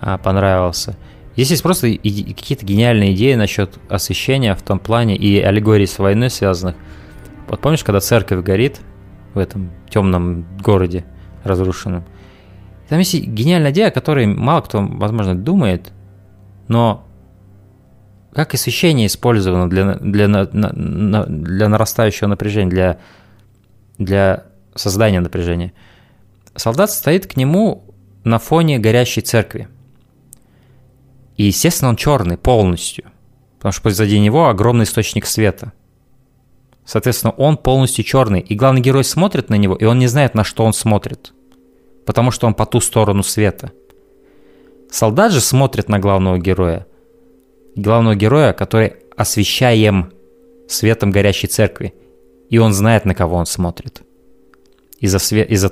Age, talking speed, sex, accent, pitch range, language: 20-39, 125 wpm, male, native, 95-120 Hz, Russian